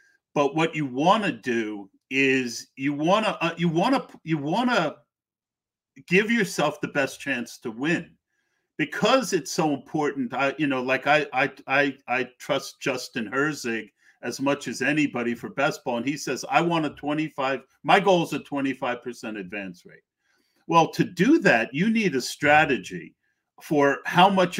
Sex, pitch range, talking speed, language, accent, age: male, 130-175 Hz, 175 wpm, English, American, 50-69